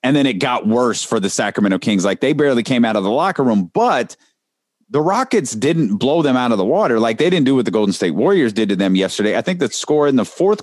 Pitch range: 100-140 Hz